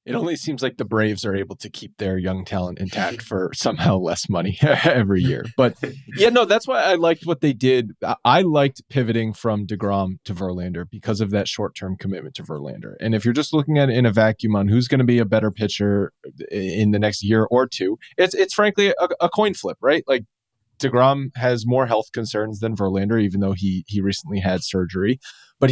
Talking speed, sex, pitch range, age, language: 220 wpm, male, 105-135 Hz, 30-49, English